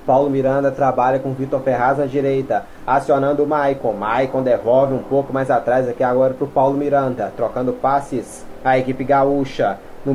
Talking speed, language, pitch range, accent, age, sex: 170 wpm, Portuguese, 120-140 Hz, Brazilian, 20-39, male